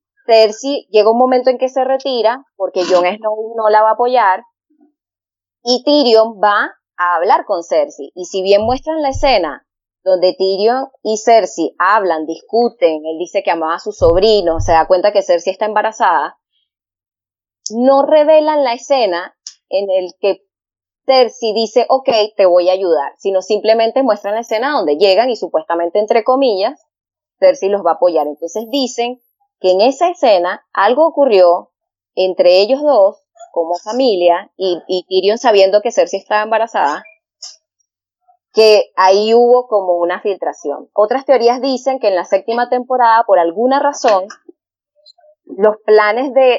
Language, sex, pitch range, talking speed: English, female, 190-260 Hz, 155 wpm